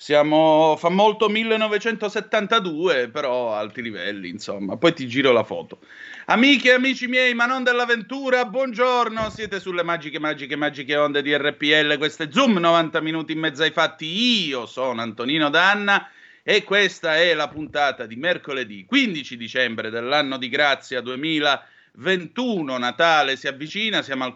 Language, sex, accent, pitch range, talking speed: Italian, male, native, 130-195 Hz, 145 wpm